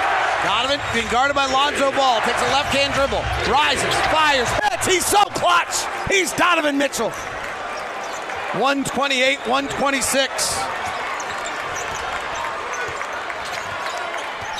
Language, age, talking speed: English, 40-59, 80 wpm